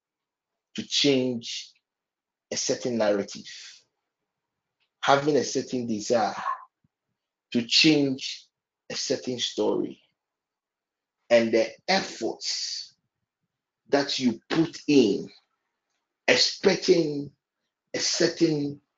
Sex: male